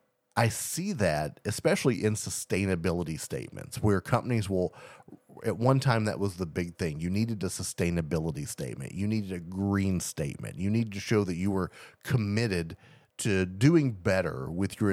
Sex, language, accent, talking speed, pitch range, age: male, English, American, 165 wpm, 90-120 Hz, 30-49